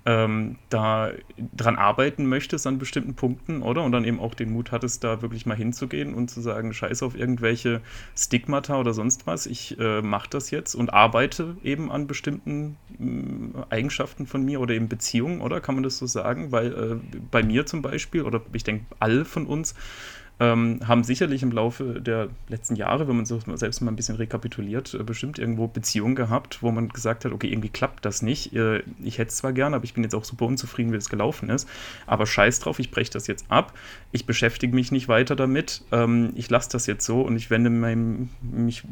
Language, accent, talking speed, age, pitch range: German, German, 200 wpm, 30-49, 110-125 Hz